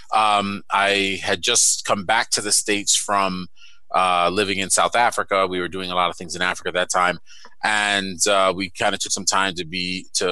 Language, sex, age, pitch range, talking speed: English, male, 30-49, 90-100 Hz, 215 wpm